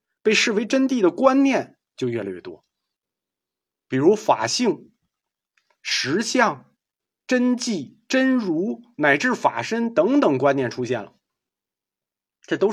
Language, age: Chinese, 50-69